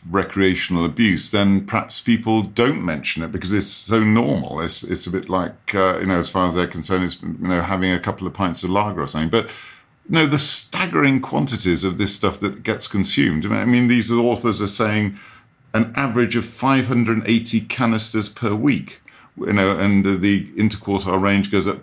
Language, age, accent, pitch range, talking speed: English, 50-69, British, 90-115 Hz, 195 wpm